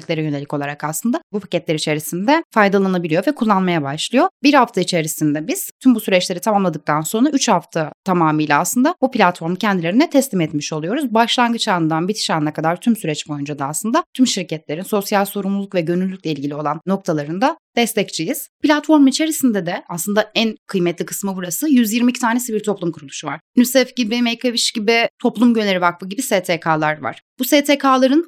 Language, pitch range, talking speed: Turkish, 175-250 Hz, 165 wpm